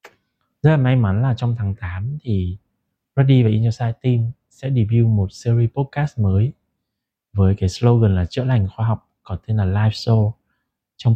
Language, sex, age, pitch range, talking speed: Vietnamese, male, 20-39, 95-125 Hz, 175 wpm